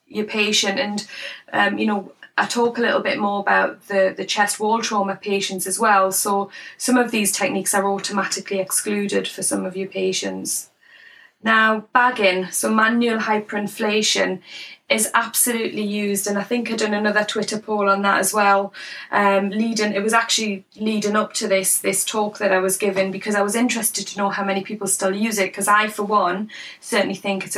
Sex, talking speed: female, 190 wpm